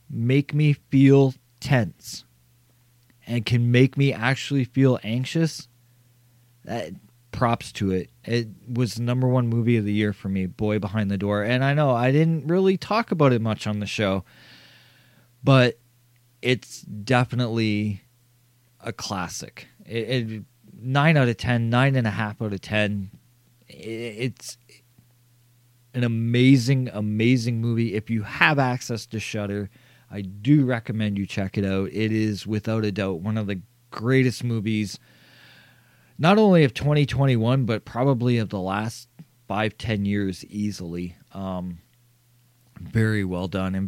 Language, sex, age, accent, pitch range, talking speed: English, male, 20-39, American, 105-125 Hz, 145 wpm